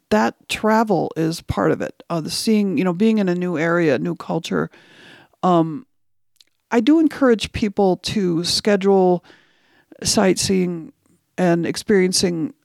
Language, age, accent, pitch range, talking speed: English, 50-69, American, 165-200 Hz, 140 wpm